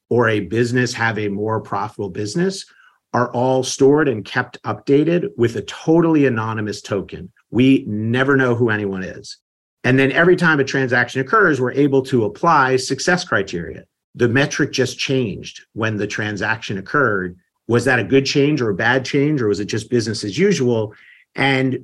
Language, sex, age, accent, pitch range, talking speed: English, male, 50-69, American, 110-135 Hz, 175 wpm